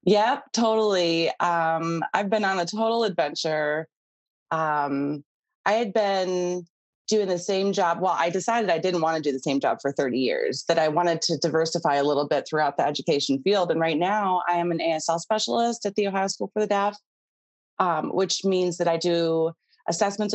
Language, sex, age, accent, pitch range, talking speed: English, female, 20-39, American, 160-205 Hz, 190 wpm